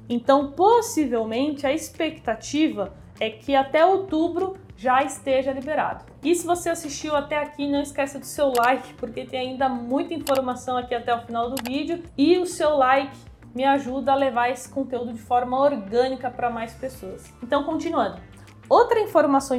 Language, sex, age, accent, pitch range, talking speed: Portuguese, female, 20-39, Brazilian, 250-310 Hz, 160 wpm